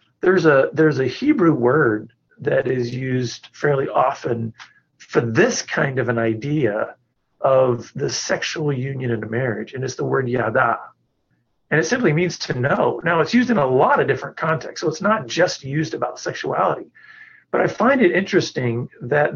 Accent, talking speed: American, 175 wpm